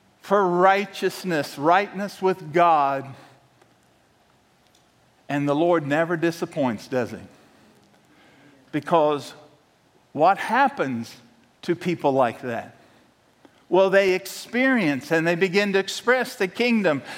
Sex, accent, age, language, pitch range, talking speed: male, American, 50-69, English, 155-215 Hz, 100 wpm